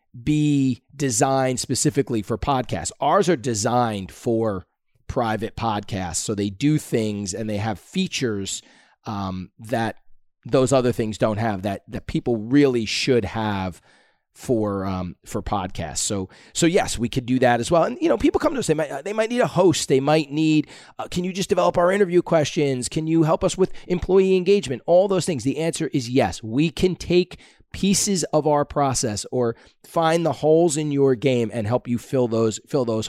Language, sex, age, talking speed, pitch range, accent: English, male, 30-49, 190 wpm, 105-155 Hz, American